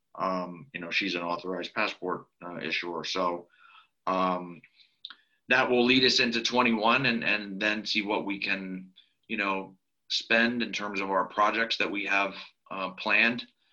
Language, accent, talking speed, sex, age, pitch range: English, American, 160 wpm, male, 30-49, 95-105 Hz